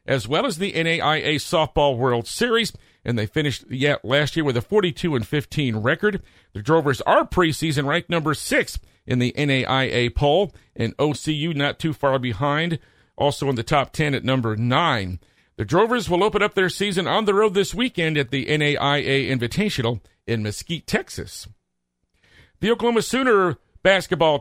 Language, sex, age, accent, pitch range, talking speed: English, male, 50-69, American, 130-175 Hz, 170 wpm